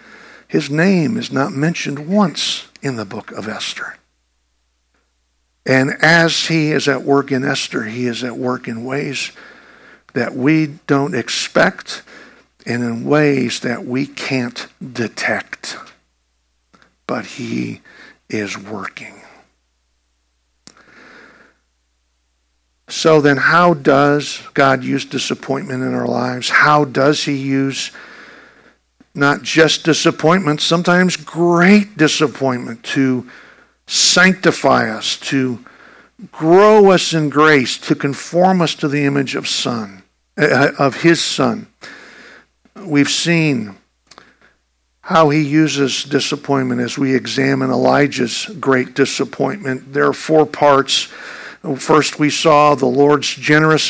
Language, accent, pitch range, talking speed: English, American, 125-155 Hz, 110 wpm